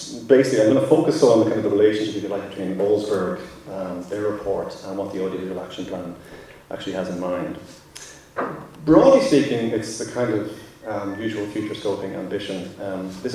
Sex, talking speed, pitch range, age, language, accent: male, 180 wpm, 100-115 Hz, 30-49, English, Irish